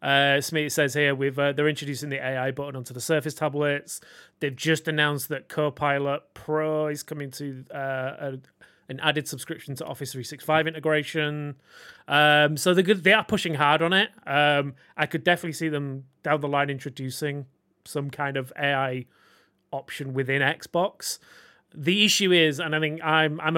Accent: British